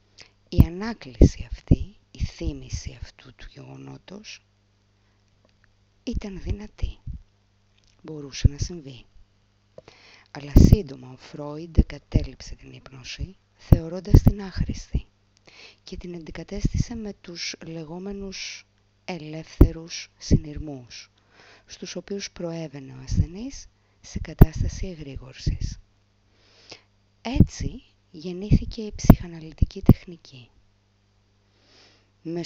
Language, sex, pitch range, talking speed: Greek, female, 100-155 Hz, 85 wpm